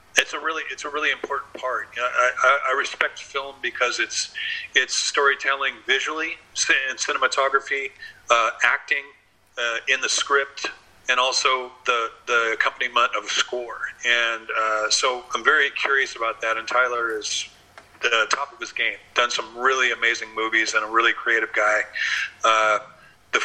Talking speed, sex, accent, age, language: 160 wpm, male, American, 40-59, English